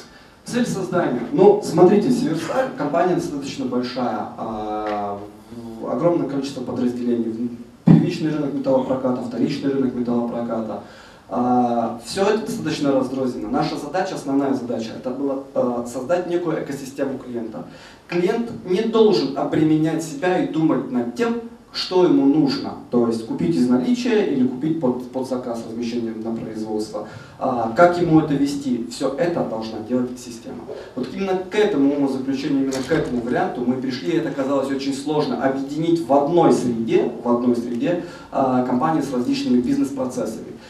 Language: Russian